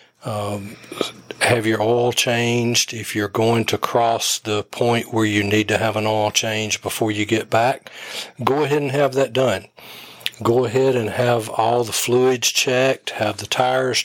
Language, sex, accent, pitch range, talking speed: English, male, American, 110-130 Hz, 175 wpm